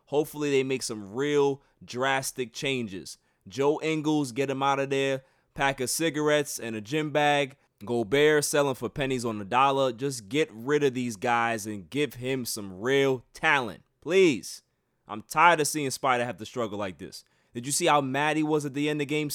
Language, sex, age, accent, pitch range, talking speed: English, male, 20-39, American, 125-160 Hz, 195 wpm